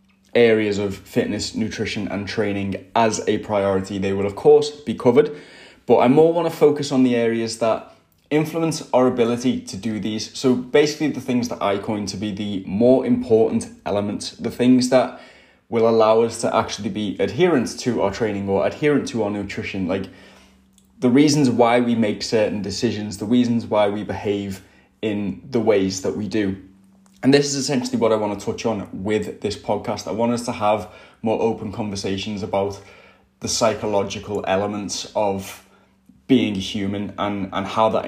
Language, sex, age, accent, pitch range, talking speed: English, male, 10-29, British, 100-125 Hz, 180 wpm